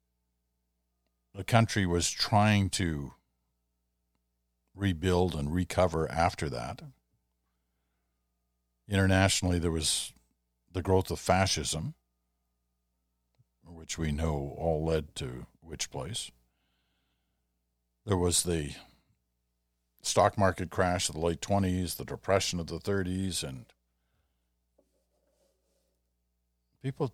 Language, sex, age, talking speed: English, male, 50-69, 95 wpm